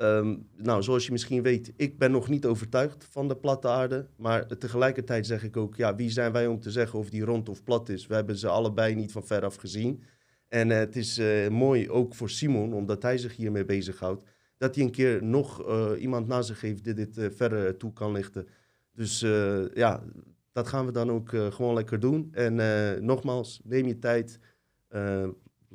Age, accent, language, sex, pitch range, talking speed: 30-49, Dutch, Dutch, male, 105-125 Hz, 210 wpm